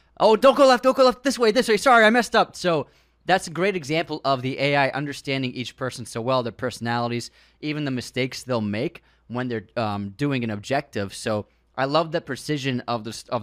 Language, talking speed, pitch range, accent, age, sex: English, 210 wpm, 115-155 Hz, American, 20-39, male